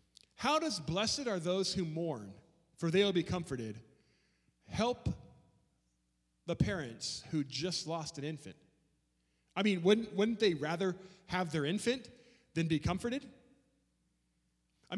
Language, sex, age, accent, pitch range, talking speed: English, male, 30-49, American, 155-230 Hz, 130 wpm